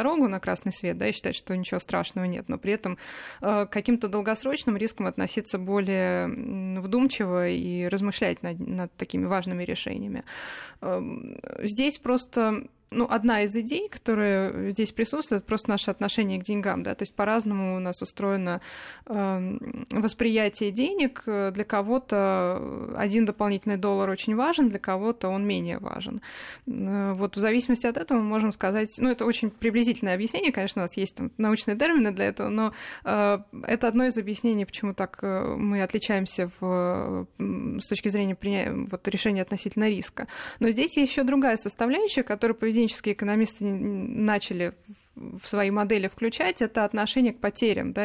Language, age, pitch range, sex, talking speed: Russian, 20-39, 200-235 Hz, female, 150 wpm